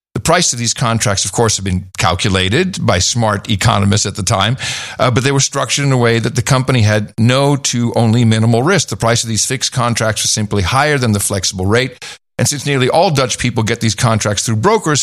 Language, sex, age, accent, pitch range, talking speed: English, male, 50-69, American, 105-130 Hz, 230 wpm